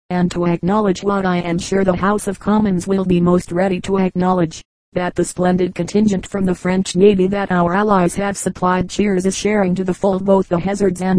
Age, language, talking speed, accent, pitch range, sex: 40-59, English, 215 wpm, American, 175-195 Hz, female